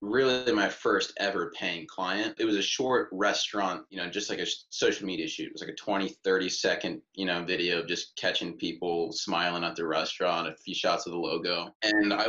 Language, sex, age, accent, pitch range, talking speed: English, male, 20-39, American, 95-130 Hz, 215 wpm